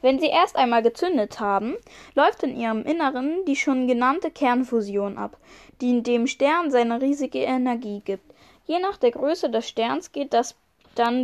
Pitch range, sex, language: 235-295 Hz, female, German